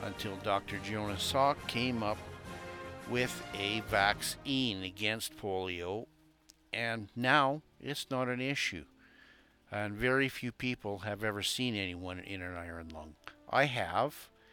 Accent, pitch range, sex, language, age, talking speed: American, 95-120 Hz, male, English, 50-69, 130 wpm